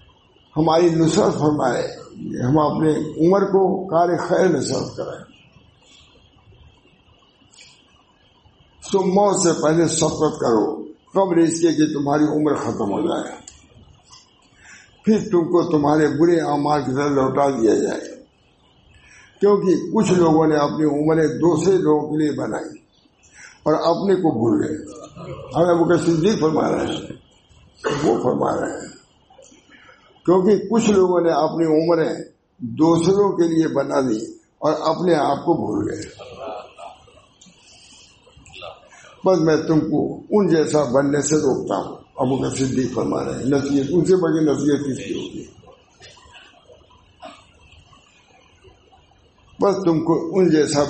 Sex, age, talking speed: male, 60-79, 100 wpm